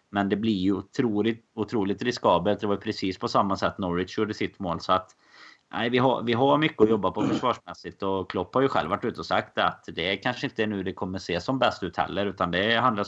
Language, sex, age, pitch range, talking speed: Swedish, male, 30-49, 90-105 Hz, 250 wpm